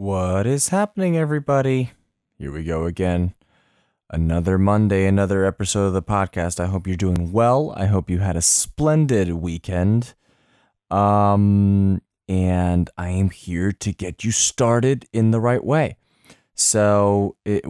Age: 20-39